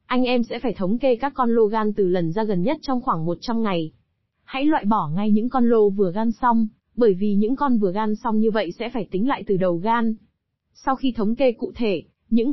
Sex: female